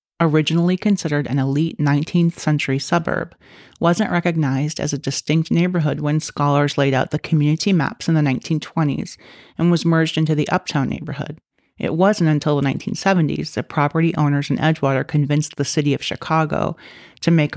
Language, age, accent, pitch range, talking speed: English, 40-59, American, 140-165 Hz, 155 wpm